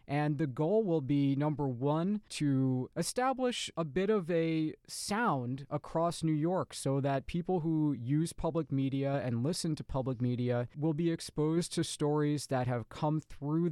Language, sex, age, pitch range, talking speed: English, male, 20-39, 130-160 Hz, 165 wpm